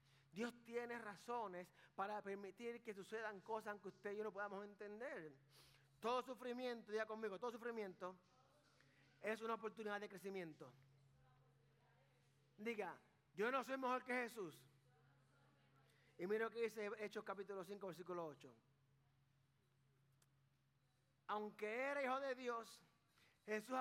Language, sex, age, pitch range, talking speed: Spanish, male, 30-49, 140-225 Hz, 125 wpm